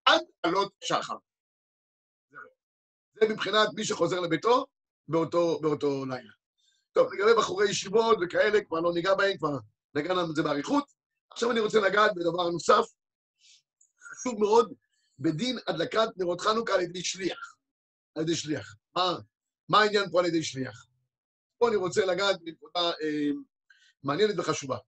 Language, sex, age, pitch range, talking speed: Hebrew, male, 50-69, 170-245 Hz, 140 wpm